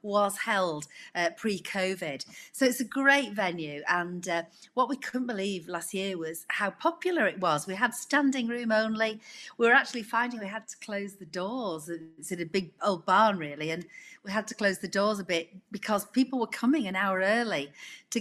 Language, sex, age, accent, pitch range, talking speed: English, female, 40-59, British, 175-235 Hz, 200 wpm